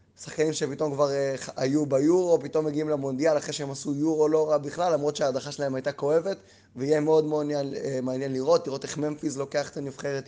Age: 20-39